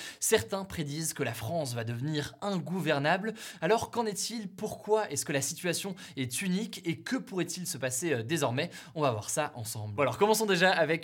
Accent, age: French, 20-39